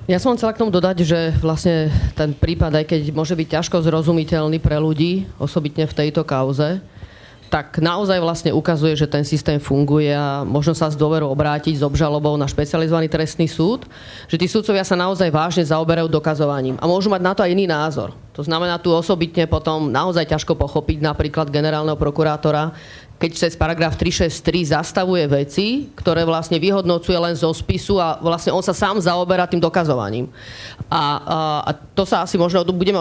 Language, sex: Slovak, female